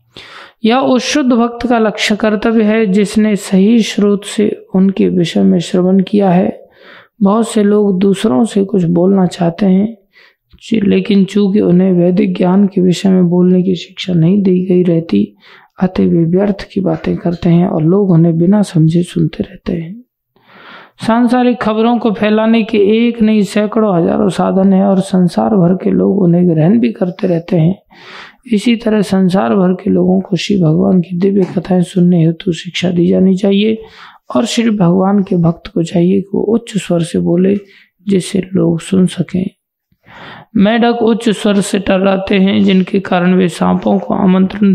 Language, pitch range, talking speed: Hindi, 180-210 Hz, 170 wpm